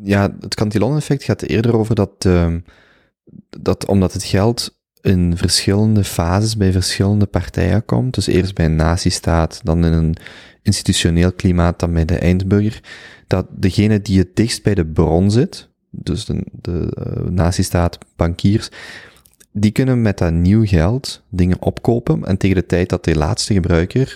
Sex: male